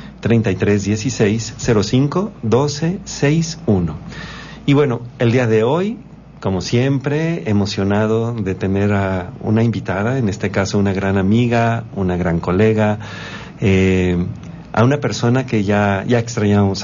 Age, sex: 50-69, male